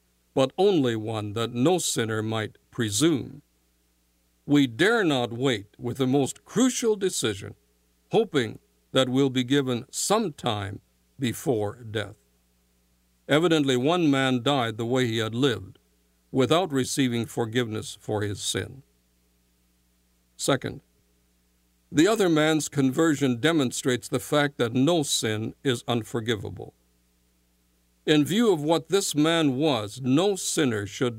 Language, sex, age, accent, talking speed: English, male, 60-79, American, 125 wpm